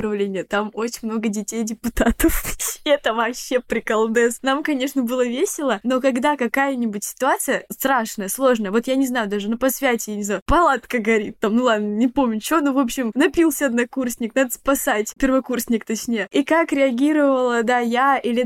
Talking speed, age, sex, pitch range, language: 165 wpm, 10-29, female, 220-265 Hz, Russian